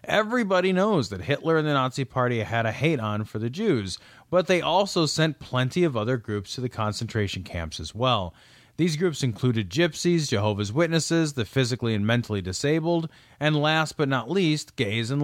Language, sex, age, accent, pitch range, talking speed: English, male, 30-49, American, 115-160 Hz, 185 wpm